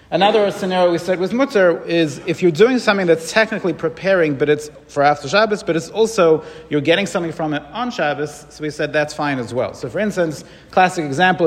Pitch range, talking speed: 140-175 Hz, 215 wpm